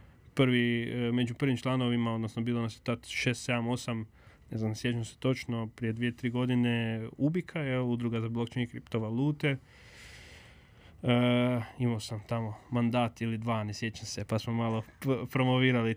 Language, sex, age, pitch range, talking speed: Croatian, male, 20-39, 110-130 Hz, 160 wpm